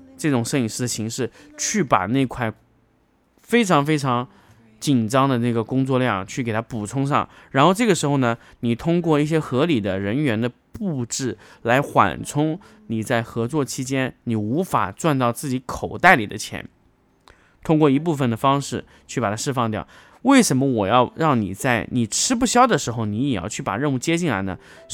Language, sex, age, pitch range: Chinese, male, 20-39, 115-160 Hz